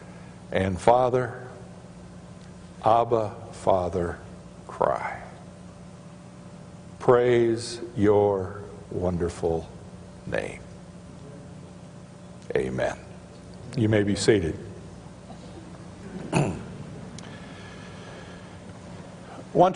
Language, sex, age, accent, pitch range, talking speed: English, male, 60-79, American, 100-140 Hz, 50 wpm